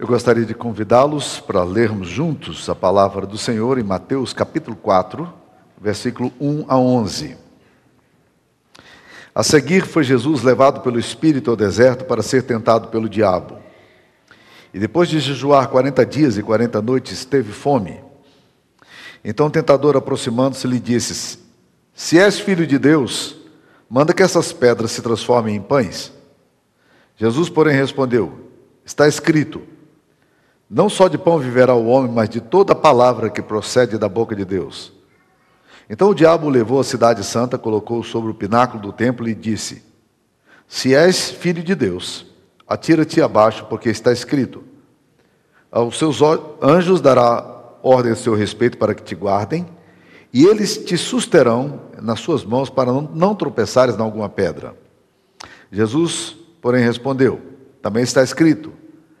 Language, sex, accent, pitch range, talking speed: Portuguese, male, Brazilian, 110-150 Hz, 145 wpm